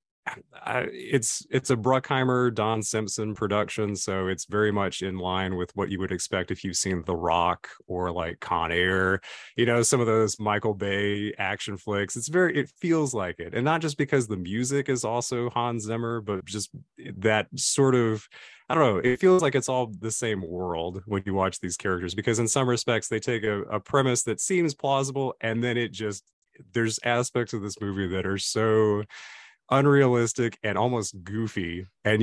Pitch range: 95-125 Hz